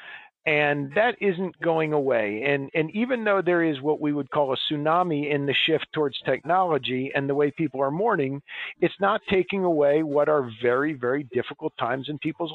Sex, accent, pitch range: male, American, 145-165 Hz